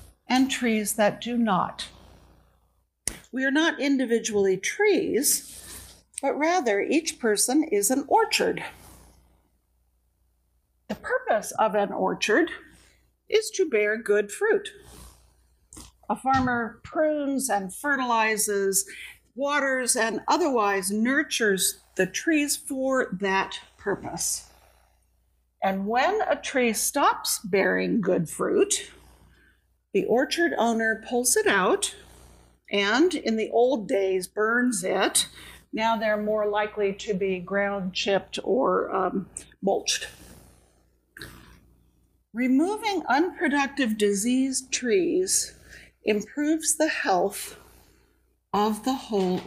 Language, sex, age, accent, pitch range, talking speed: English, female, 60-79, American, 185-280 Hz, 100 wpm